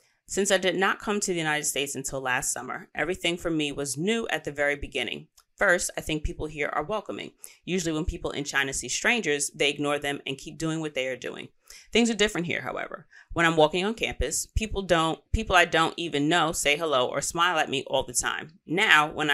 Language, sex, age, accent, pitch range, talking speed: English, female, 30-49, American, 140-175 Hz, 225 wpm